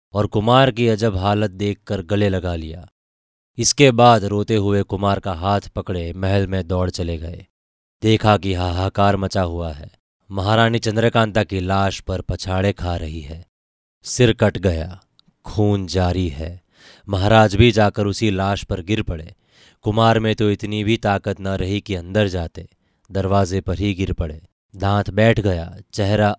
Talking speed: 160 wpm